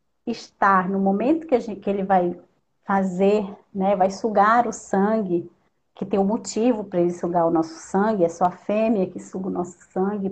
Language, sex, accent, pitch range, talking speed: Portuguese, female, Brazilian, 185-250 Hz, 205 wpm